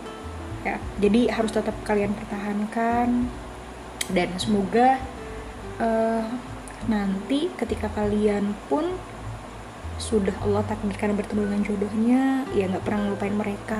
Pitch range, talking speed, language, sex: 195-230 Hz, 105 wpm, Indonesian, female